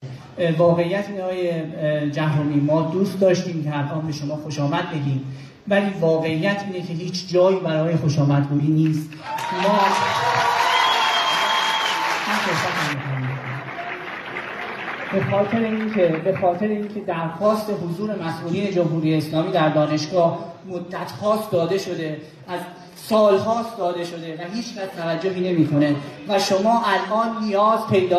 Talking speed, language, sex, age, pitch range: 115 wpm, Persian, male, 30-49, 160-215 Hz